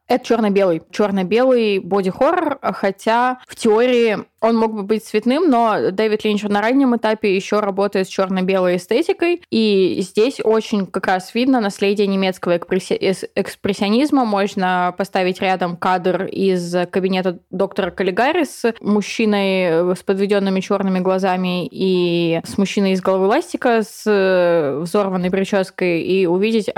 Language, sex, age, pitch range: Russian, female, 20-39, 190-230 Hz